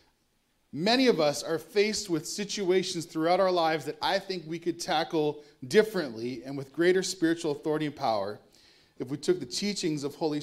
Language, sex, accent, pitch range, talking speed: English, male, American, 160-210 Hz, 180 wpm